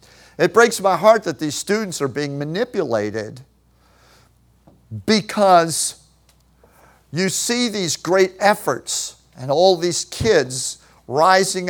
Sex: male